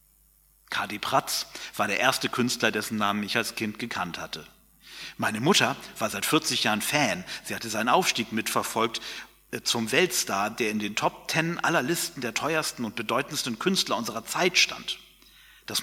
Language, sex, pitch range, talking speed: German, male, 115-155 Hz, 165 wpm